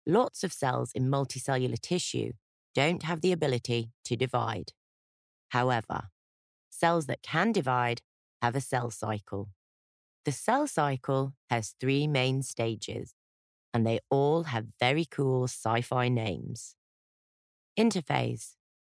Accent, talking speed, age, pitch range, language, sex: British, 115 wpm, 30-49, 115-145 Hz, English, female